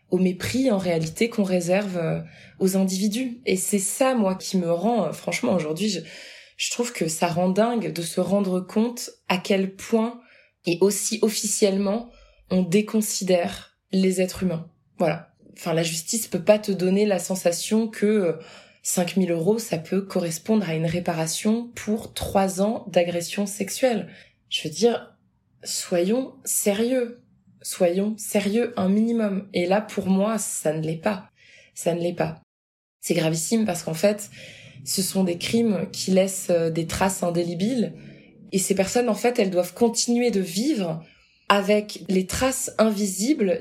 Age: 20-39